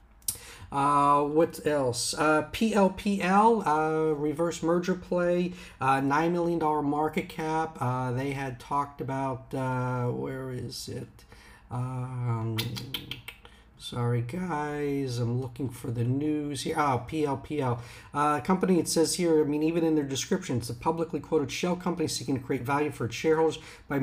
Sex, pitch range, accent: male, 125-165 Hz, American